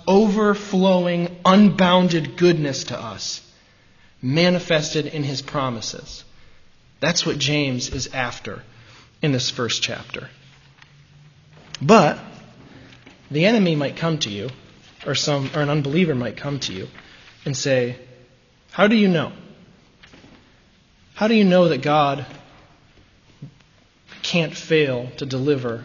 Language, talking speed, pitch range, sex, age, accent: English, 115 wpm, 140-195 Hz, male, 30-49, American